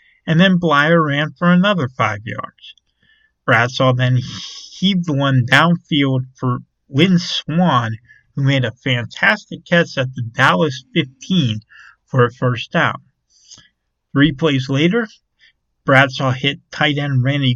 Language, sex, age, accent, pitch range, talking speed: English, male, 50-69, American, 120-165 Hz, 125 wpm